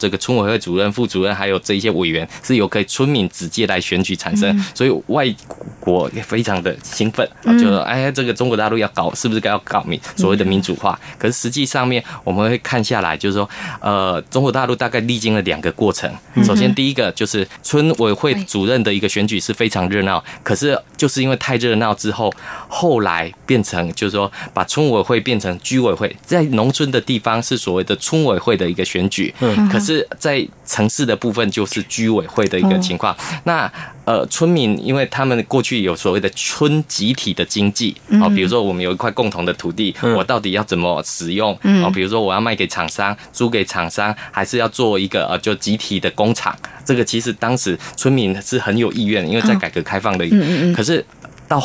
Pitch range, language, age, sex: 100-130 Hz, Chinese, 20-39, male